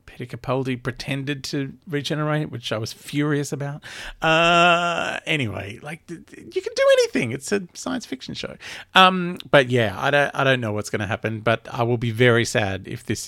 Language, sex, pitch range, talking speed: English, male, 120-155 Hz, 185 wpm